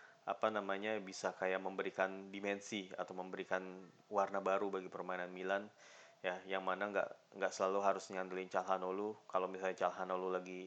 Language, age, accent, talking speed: Indonesian, 20-39, native, 145 wpm